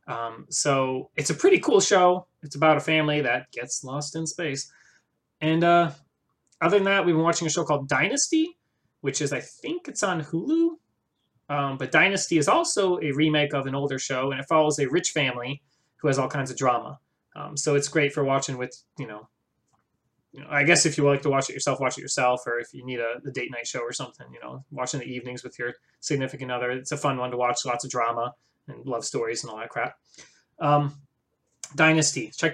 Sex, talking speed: male, 220 wpm